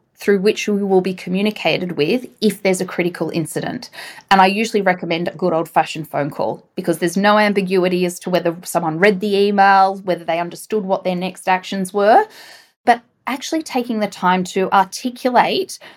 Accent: Australian